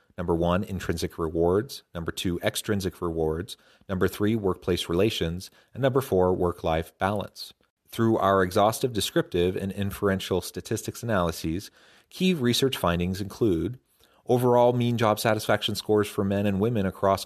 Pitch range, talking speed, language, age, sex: 90-110 Hz, 140 wpm, English, 30-49, male